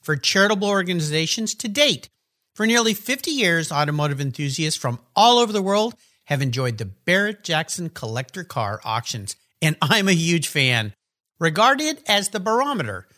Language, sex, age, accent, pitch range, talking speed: English, male, 50-69, American, 140-210 Hz, 145 wpm